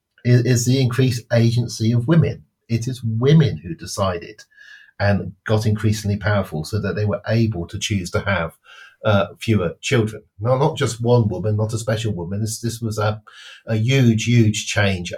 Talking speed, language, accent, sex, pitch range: 175 wpm, English, British, male, 100-120 Hz